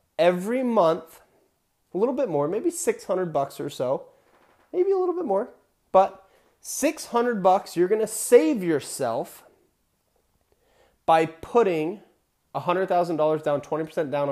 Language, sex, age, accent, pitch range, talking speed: English, male, 30-49, American, 155-210 Hz, 120 wpm